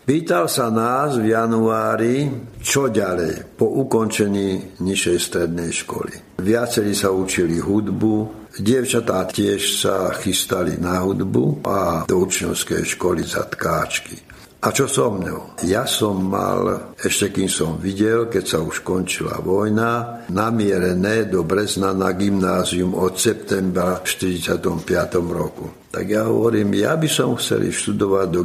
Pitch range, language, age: 95-115 Hz, Slovak, 60-79